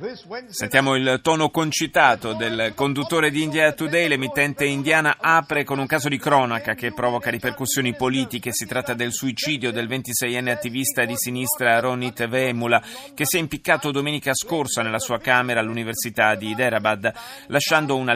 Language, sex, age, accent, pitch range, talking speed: Italian, male, 30-49, native, 115-145 Hz, 150 wpm